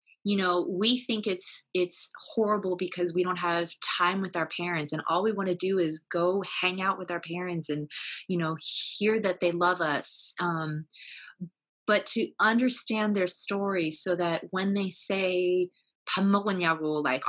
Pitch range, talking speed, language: 160-190 Hz, 165 wpm, English